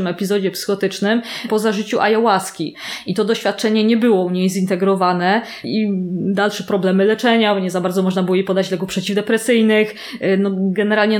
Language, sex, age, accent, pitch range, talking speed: Polish, female, 20-39, native, 185-215 Hz, 150 wpm